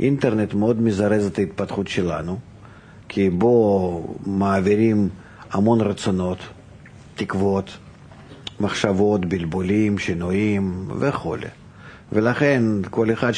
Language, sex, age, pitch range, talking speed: Hebrew, male, 50-69, 95-115 Hz, 85 wpm